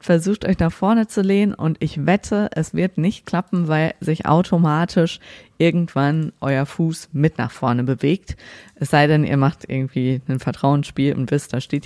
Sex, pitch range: female, 145-180 Hz